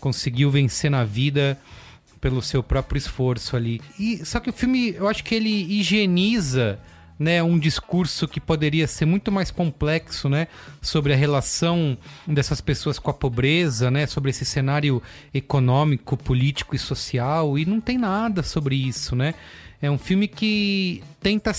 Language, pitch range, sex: English, 135-185 Hz, male